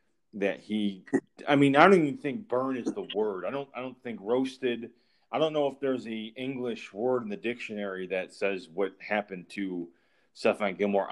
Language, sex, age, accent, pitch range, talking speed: English, male, 30-49, American, 100-125 Hz, 195 wpm